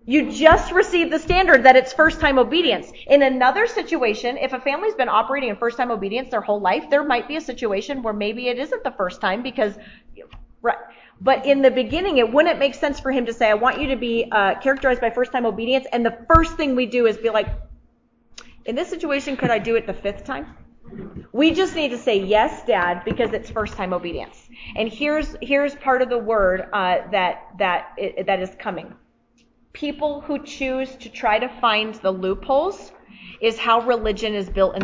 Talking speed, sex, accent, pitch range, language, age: 210 wpm, female, American, 220-295 Hz, English, 30-49